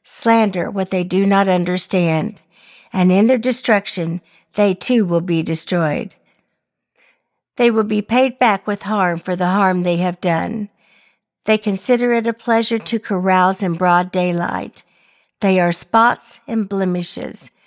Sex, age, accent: female, 50-69, American